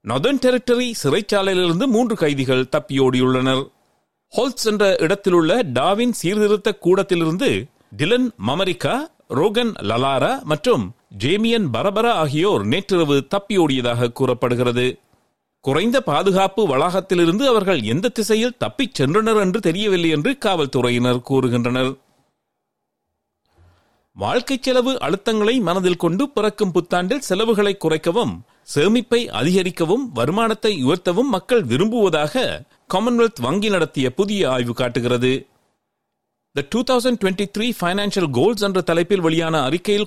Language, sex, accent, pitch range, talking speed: Tamil, male, native, 150-220 Hz, 80 wpm